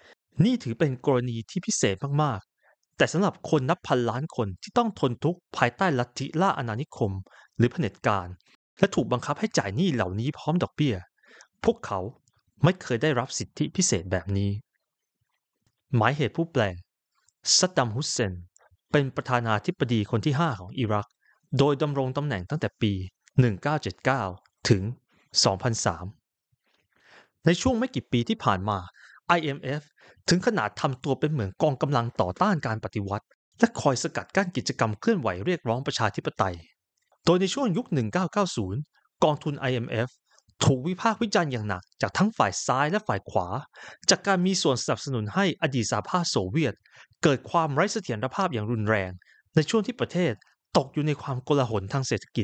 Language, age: Thai, 30-49